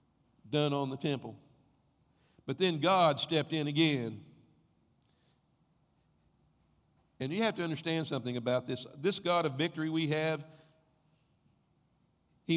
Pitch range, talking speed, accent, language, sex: 140-170 Hz, 120 wpm, American, English, male